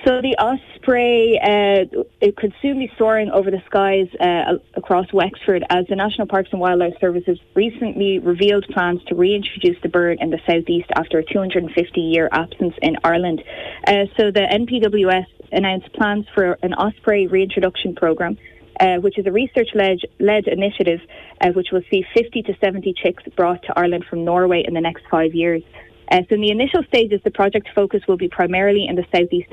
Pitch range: 175-205 Hz